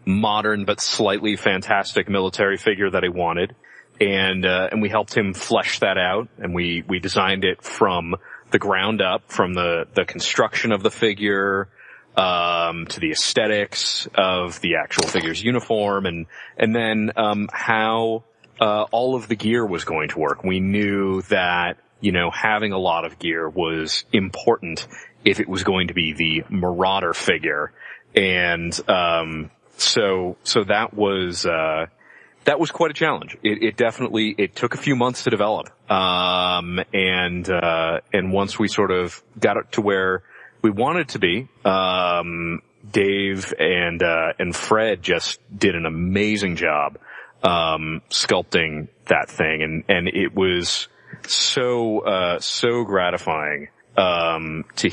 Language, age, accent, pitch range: English, 30-49, American, 85-105 Hz